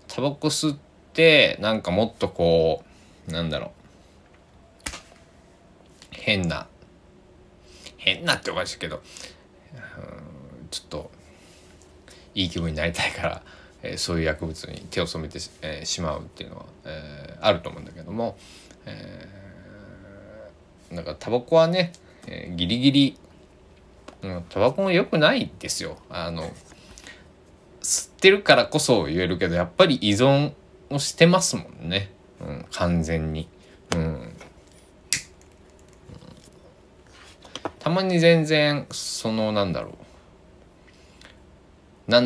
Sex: male